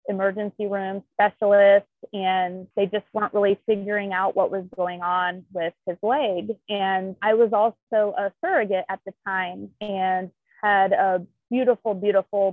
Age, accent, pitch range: 30-49, American, 195-225 Hz